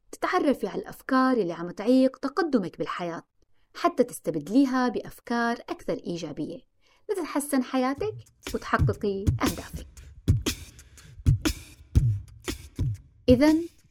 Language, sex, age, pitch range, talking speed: Arabic, female, 30-49, 190-300 Hz, 80 wpm